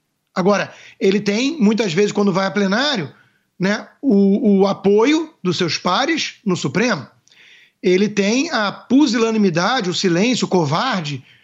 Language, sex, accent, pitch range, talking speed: Portuguese, male, Brazilian, 195-270 Hz, 135 wpm